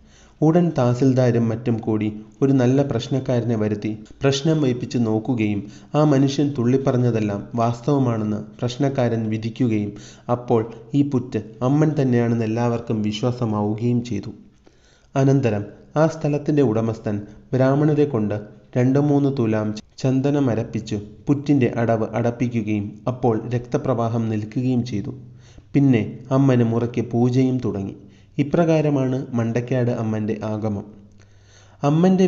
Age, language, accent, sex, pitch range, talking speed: 30-49, Malayalam, native, male, 110-130 Hz, 95 wpm